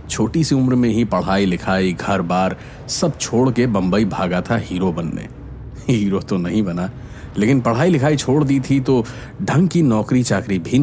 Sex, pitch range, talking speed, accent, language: male, 90-135 Hz, 185 wpm, native, Hindi